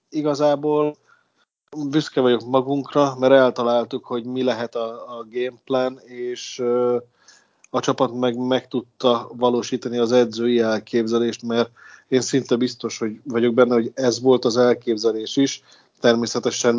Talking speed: 130 wpm